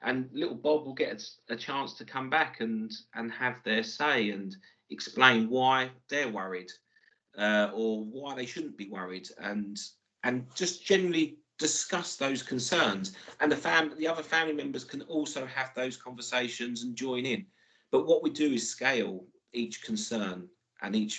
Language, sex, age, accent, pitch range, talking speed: English, male, 40-59, British, 110-150 Hz, 165 wpm